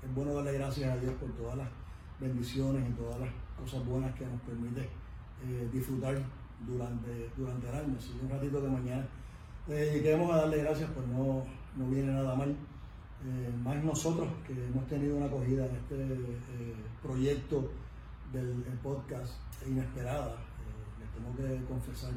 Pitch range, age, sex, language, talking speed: 120-145 Hz, 40-59, male, Spanish, 170 wpm